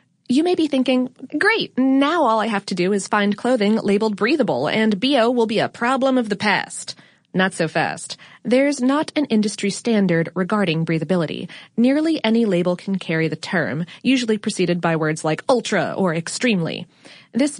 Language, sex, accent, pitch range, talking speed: English, female, American, 175-245 Hz, 175 wpm